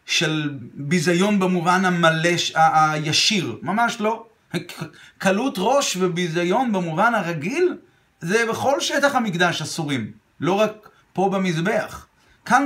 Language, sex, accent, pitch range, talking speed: Hebrew, male, native, 170-235 Hz, 120 wpm